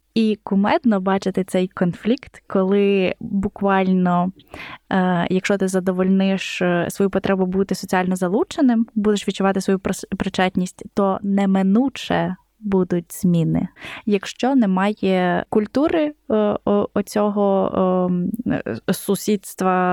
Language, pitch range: Ukrainian, 185-210 Hz